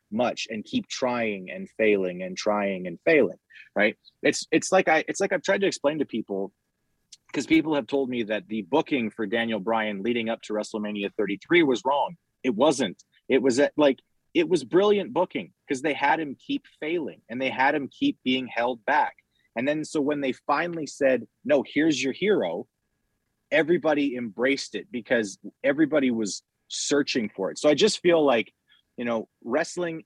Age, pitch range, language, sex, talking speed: 30-49, 110-150 Hz, English, male, 185 wpm